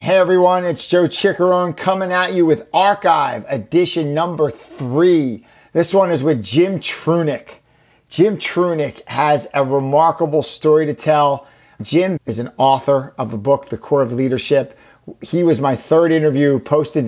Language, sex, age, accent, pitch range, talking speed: English, male, 50-69, American, 130-155 Hz, 155 wpm